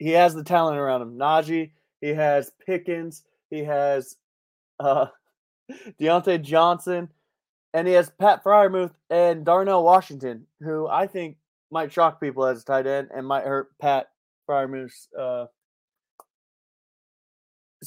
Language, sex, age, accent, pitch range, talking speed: English, male, 20-39, American, 140-175 Hz, 130 wpm